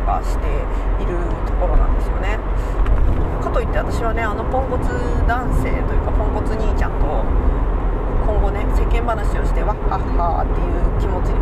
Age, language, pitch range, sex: 40-59, Japanese, 70-85 Hz, female